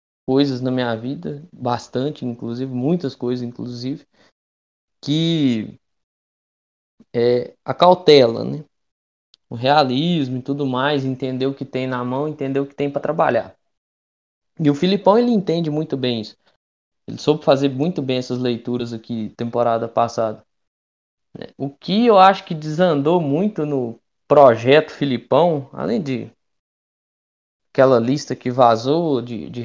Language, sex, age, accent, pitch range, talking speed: Portuguese, male, 20-39, Brazilian, 120-175 Hz, 135 wpm